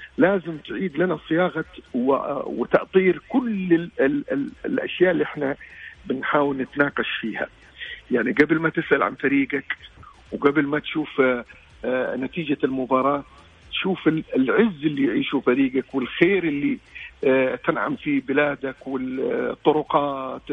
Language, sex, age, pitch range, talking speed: Arabic, male, 50-69, 135-155 Hz, 100 wpm